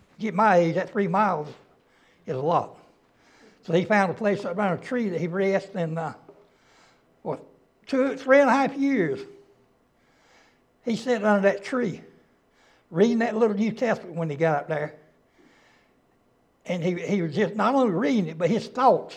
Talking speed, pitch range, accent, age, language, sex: 175 wpm, 175-230 Hz, American, 60-79, English, male